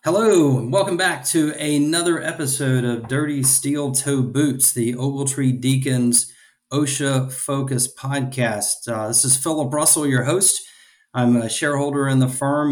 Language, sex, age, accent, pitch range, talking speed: English, male, 40-59, American, 115-135 Hz, 145 wpm